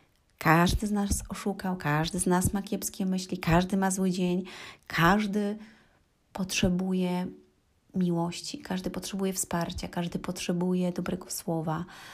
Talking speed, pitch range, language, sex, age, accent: 120 wpm, 155-190 Hz, Polish, female, 30-49, native